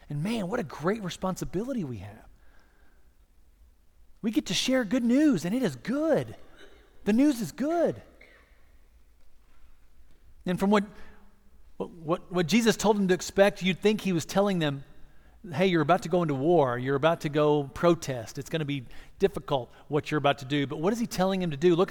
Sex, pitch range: male, 140-190 Hz